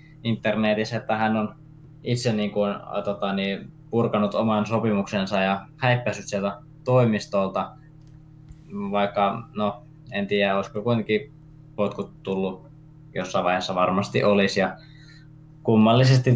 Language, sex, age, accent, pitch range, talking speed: Finnish, male, 20-39, native, 100-150 Hz, 110 wpm